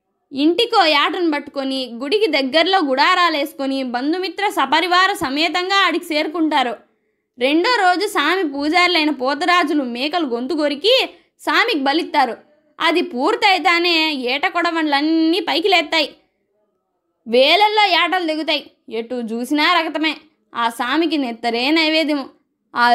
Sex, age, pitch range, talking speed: female, 20-39, 270-350 Hz, 95 wpm